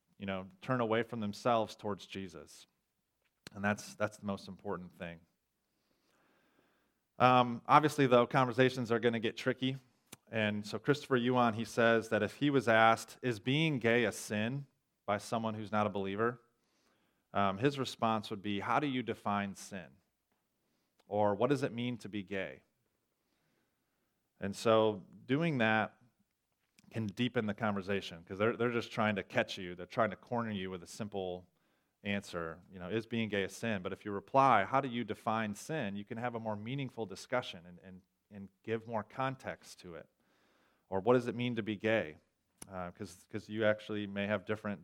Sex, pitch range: male, 100-120 Hz